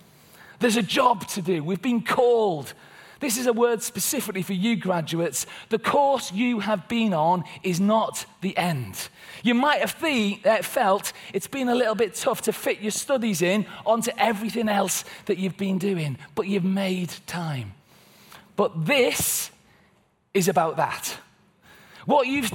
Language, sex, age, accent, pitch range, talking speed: English, male, 30-49, British, 175-235 Hz, 155 wpm